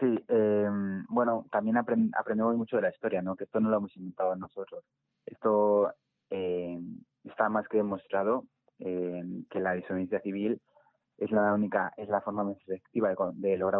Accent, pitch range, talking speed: Spanish, 100-115 Hz, 170 wpm